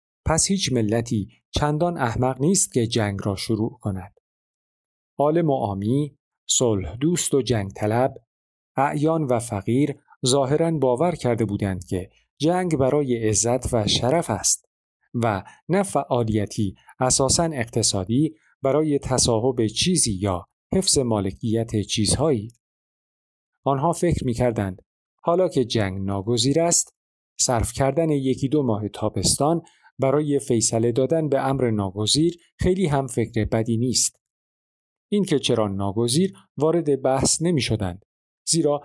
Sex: male